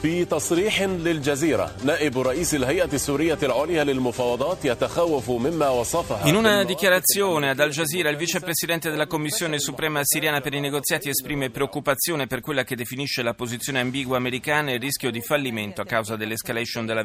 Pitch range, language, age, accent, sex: 120-165 Hz, Italian, 30-49, native, male